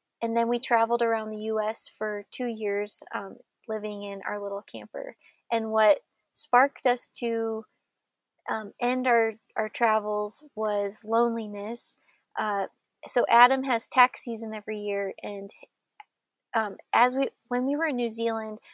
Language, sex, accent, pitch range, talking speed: English, female, American, 215-245 Hz, 145 wpm